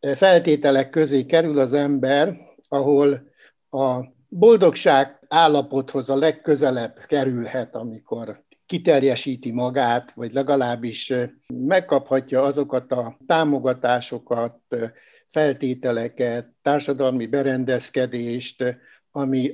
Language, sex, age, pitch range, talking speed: Hungarian, male, 60-79, 125-155 Hz, 75 wpm